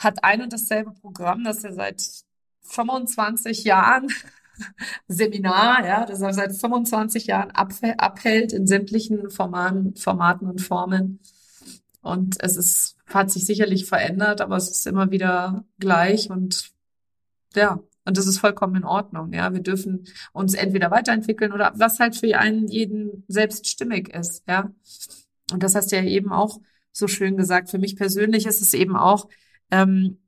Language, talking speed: German, 160 wpm